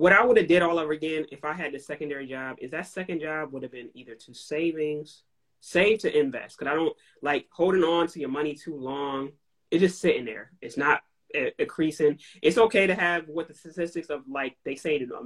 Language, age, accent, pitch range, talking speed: English, 20-39, American, 135-175 Hz, 230 wpm